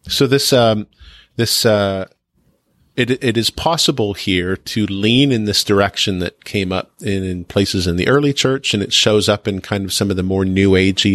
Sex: male